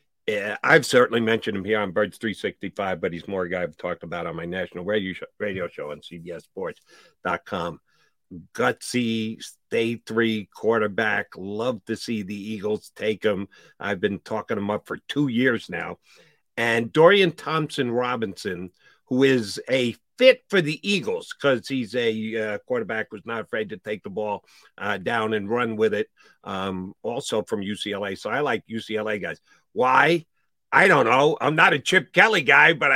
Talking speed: 170 wpm